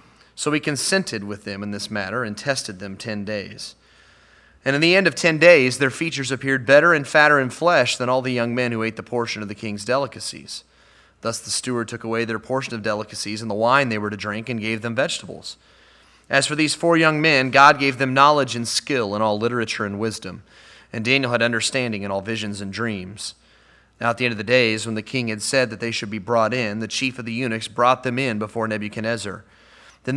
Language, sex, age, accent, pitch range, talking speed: English, male, 30-49, American, 110-135 Hz, 230 wpm